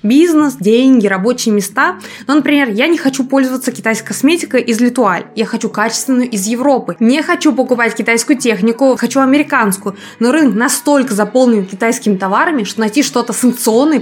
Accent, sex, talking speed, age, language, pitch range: native, female, 155 wpm, 20-39, Russian, 220-275 Hz